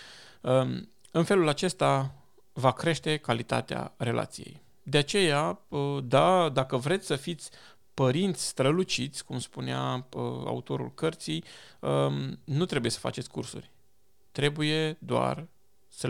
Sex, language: male, Romanian